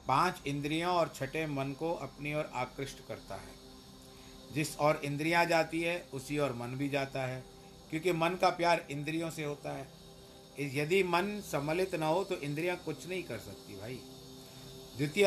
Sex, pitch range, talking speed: male, 130-165 Hz, 170 wpm